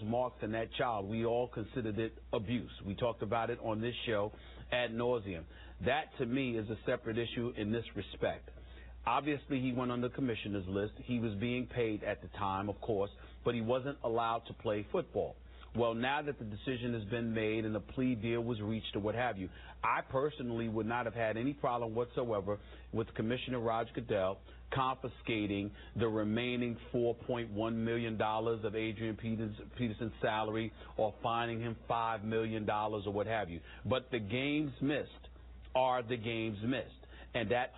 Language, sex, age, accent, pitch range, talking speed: English, male, 40-59, American, 105-125 Hz, 175 wpm